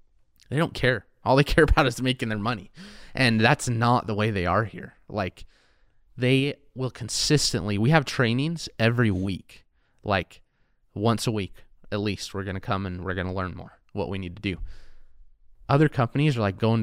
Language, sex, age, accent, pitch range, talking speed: English, male, 20-39, American, 90-115 Hz, 195 wpm